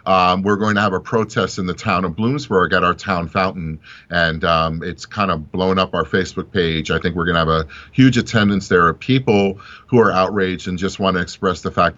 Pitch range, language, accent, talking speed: 95-125 Hz, English, American, 240 wpm